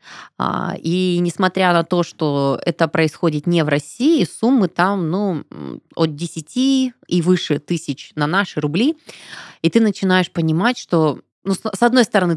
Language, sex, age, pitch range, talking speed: Russian, female, 20-39, 160-205 Hz, 145 wpm